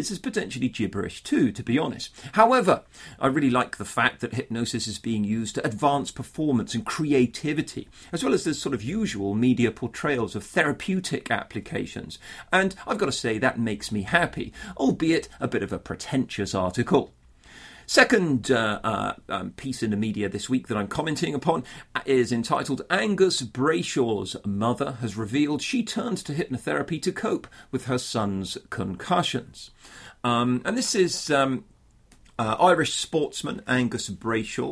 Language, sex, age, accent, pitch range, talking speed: English, male, 40-59, British, 115-155 Hz, 160 wpm